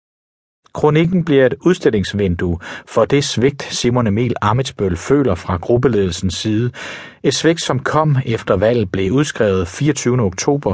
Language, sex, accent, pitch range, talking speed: Danish, male, native, 95-135 Hz, 135 wpm